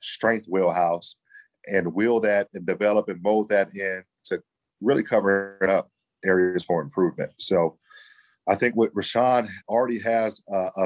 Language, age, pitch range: English, 40-59, 95-115 Hz